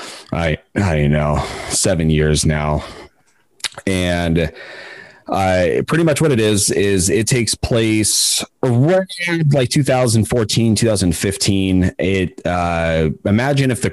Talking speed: 110 wpm